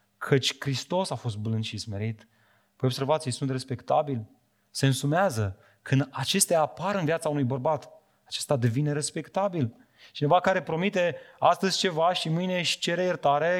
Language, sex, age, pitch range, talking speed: Romanian, male, 30-49, 130-180 Hz, 150 wpm